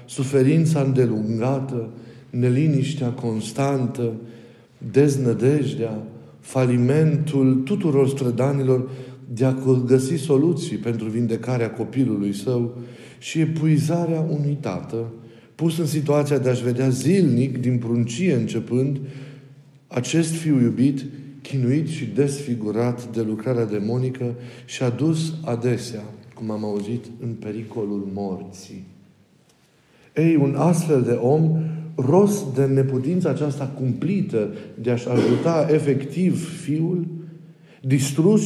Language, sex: Romanian, male